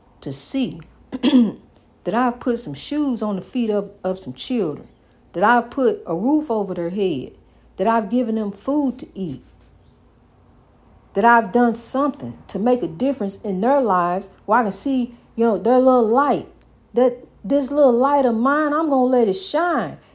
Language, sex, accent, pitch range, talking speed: English, female, American, 210-280 Hz, 180 wpm